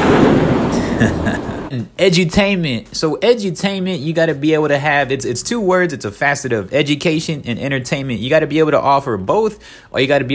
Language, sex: English, male